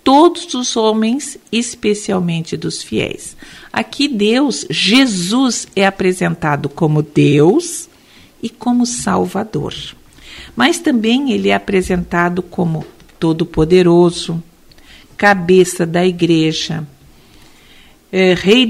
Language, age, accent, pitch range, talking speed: Portuguese, 50-69, Brazilian, 170-240 Hz, 85 wpm